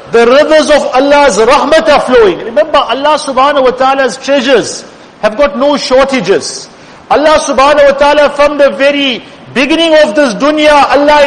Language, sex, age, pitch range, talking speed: English, male, 50-69, 250-300 Hz, 155 wpm